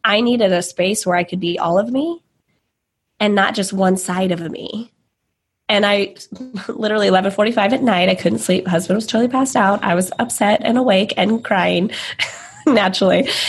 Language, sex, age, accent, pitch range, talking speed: English, female, 20-39, American, 185-225 Hz, 180 wpm